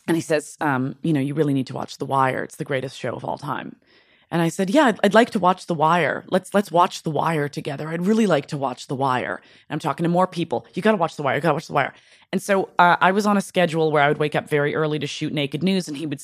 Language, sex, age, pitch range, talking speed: English, female, 20-39, 155-230 Hz, 310 wpm